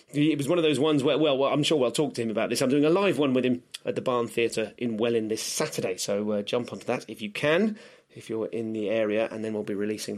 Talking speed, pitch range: 295 wpm, 115-160 Hz